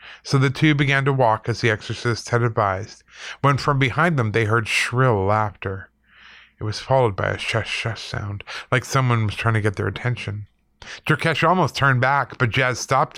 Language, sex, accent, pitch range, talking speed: English, male, American, 105-125 Hz, 185 wpm